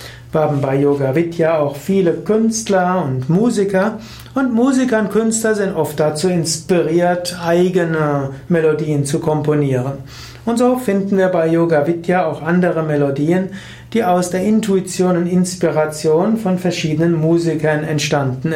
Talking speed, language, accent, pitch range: 135 wpm, German, German, 145-180 Hz